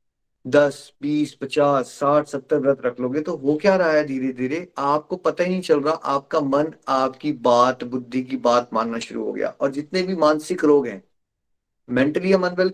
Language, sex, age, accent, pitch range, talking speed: Hindi, male, 30-49, native, 130-165 Hz, 190 wpm